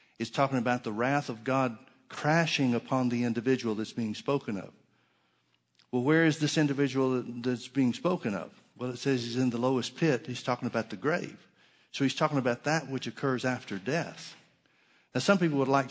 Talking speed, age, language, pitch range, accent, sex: 190 wpm, 60-79, English, 115-140 Hz, American, male